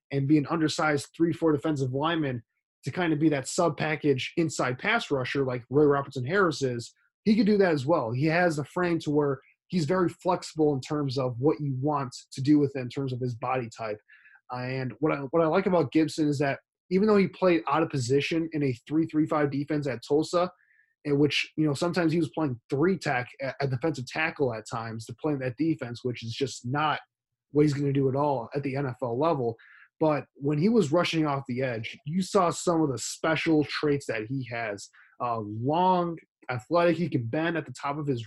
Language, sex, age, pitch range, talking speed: English, male, 20-39, 130-165 Hz, 220 wpm